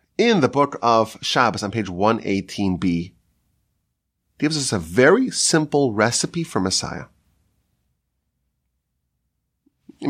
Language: English